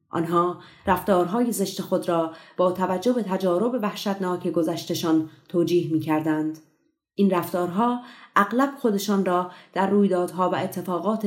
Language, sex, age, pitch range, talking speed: Persian, female, 30-49, 170-200 Hz, 115 wpm